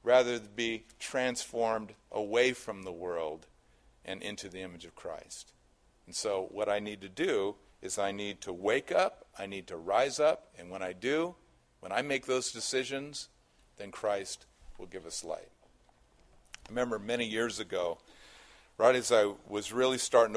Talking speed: 170 wpm